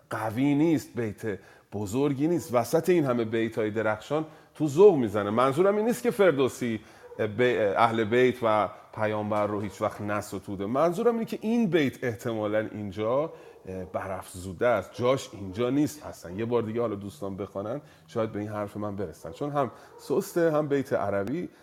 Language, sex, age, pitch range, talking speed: Persian, male, 30-49, 105-150 Hz, 170 wpm